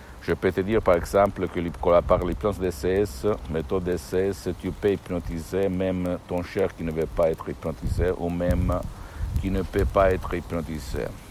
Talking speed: 170 wpm